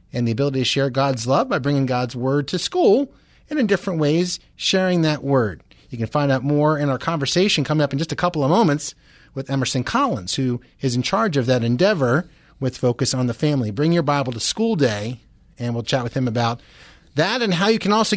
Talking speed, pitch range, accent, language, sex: 230 wpm, 130-170 Hz, American, English, male